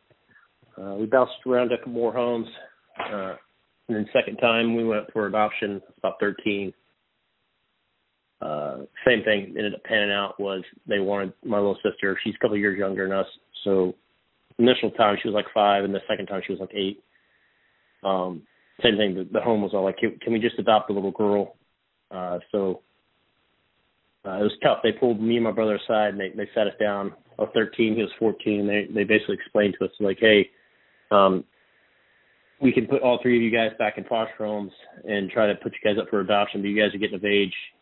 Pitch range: 100-110 Hz